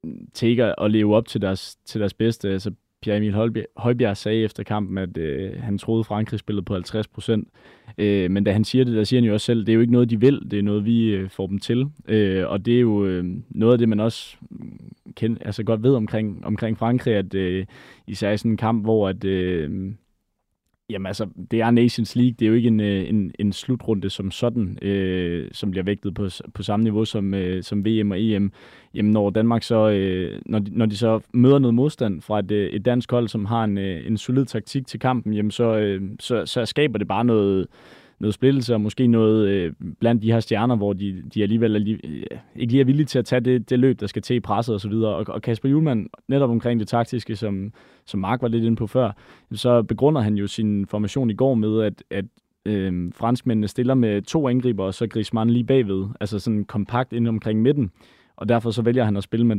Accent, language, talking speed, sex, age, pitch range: native, Danish, 220 wpm, male, 20-39, 100-120 Hz